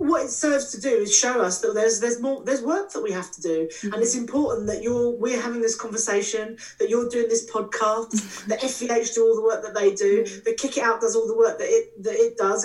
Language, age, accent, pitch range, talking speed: English, 40-59, British, 200-240 Hz, 260 wpm